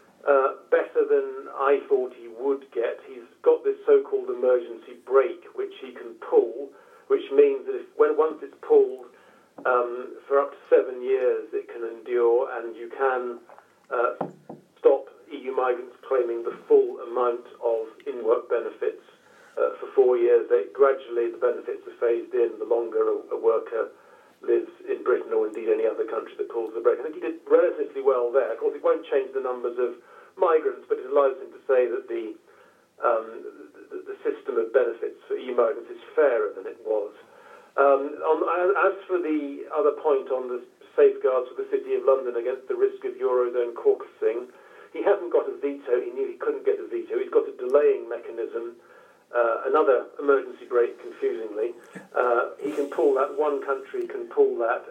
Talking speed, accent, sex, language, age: 175 wpm, British, male, English, 50-69